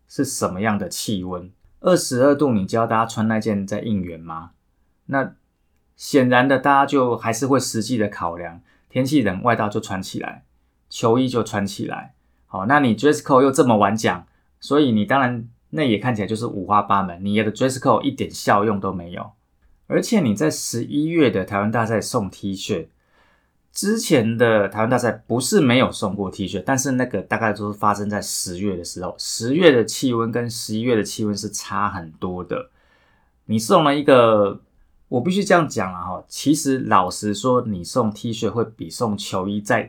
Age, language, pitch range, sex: 20-39, Chinese, 95-120 Hz, male